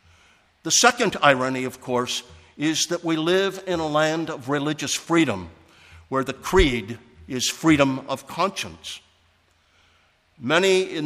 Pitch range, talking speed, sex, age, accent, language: 115-155 Hz, 130 wpm, male, 60-79, American, English